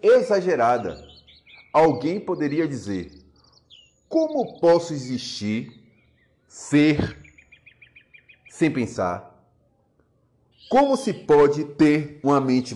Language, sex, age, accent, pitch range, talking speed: Portuguese, male, 40-59, Brazilian, 115-175 Hz, 75 wpm